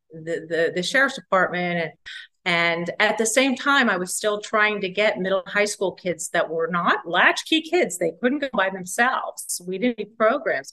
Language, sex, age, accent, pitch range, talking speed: English, female, 40-59, American, 185-250 Hz, 195 wpm